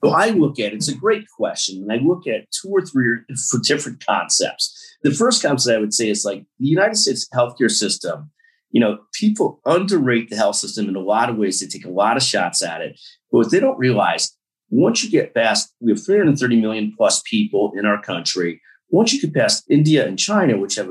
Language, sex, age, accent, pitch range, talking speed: English, male, 40-59, American, 105-175 Hz, 225 wpm